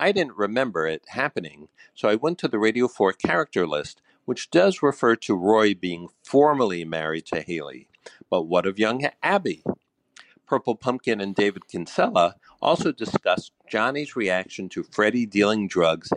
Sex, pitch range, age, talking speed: male, 90-125 Hz, 60-79, 155 wpm